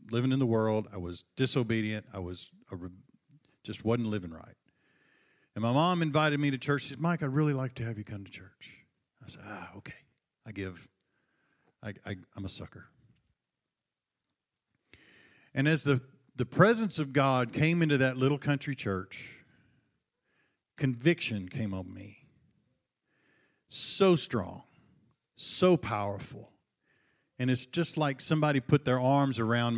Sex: male